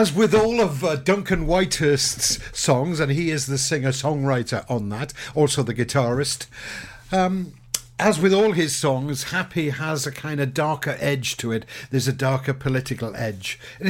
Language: English